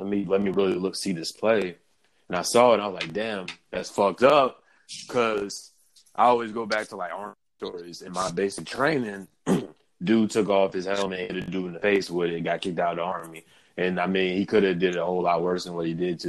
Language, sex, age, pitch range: English, male, 20-39, 85-100 Hz